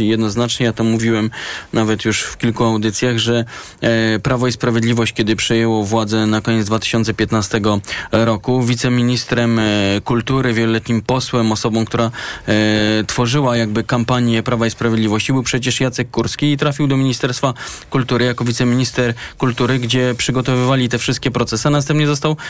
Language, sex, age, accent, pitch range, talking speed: Polish, male, 20-39, native, 120-145 Hz, 140 wpm